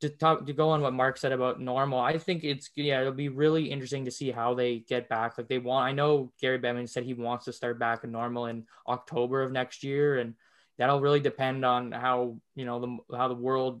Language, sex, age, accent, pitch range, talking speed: English, male, 20-39, American, 120-140 Hz, 245 wpm